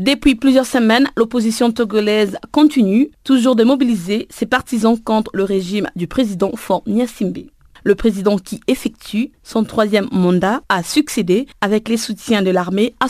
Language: French